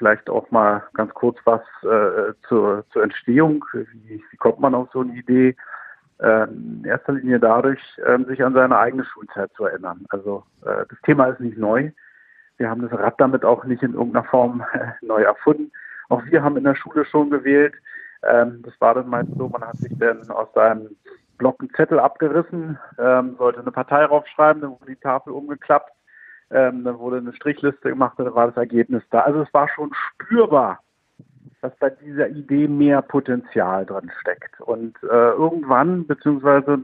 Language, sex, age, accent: German, male, 50-69, German